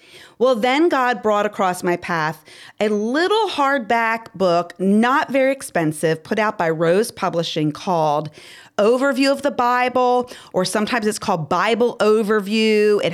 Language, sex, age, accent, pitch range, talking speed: English, female, 40-59, American, 170-245 Hz, 140 wpm